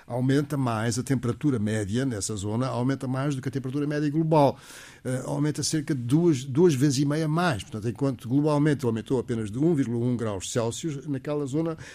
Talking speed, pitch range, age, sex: 175 wpm, 120-160 Hz, 60-79, male